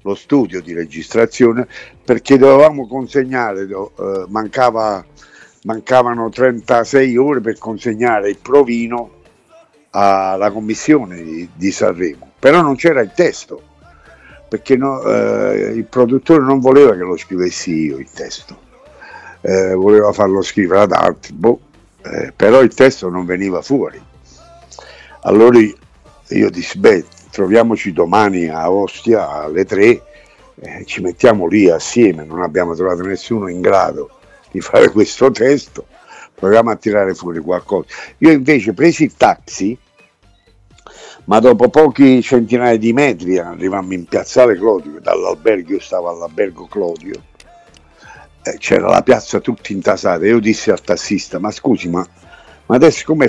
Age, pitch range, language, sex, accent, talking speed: 60-79, 90-125 Hz, Italian, male, native, 135 wpm